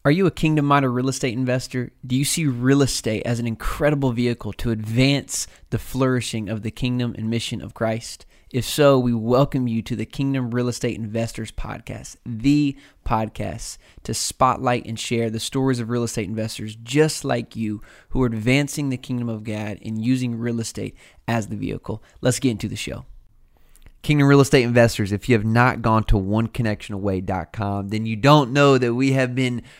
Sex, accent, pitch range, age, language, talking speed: male, American, 105-125 Hz, 20-39, English, 185 wpm